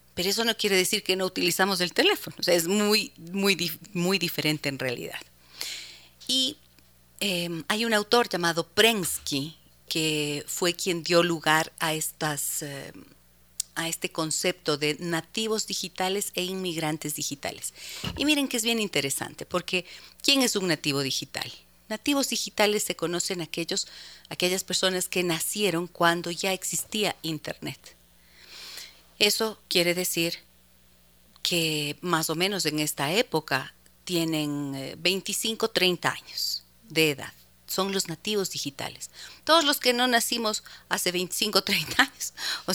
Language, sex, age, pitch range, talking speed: Spanish, female, 40-59, 150-200 Hz, 140 wpm